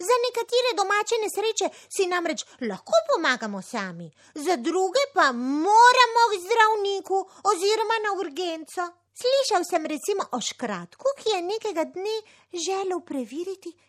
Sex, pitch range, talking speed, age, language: female, 280-440 Hz, 125 wpm, 30-49, Italian